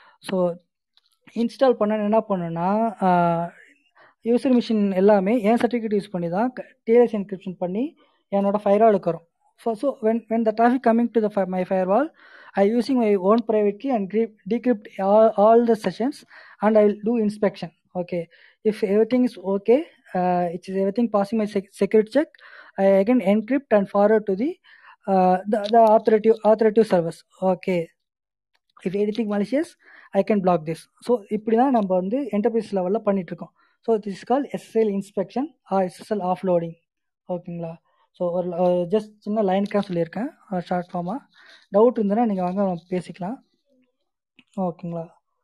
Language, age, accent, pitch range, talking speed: Tamil, 20-39, native, 185-230 Hz, 145 wpm